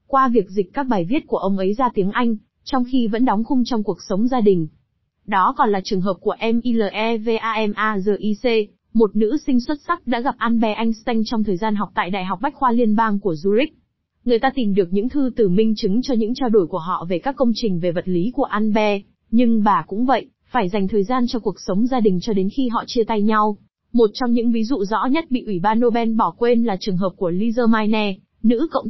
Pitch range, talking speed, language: 200-245 Hz, 245 wpm, Vietnamese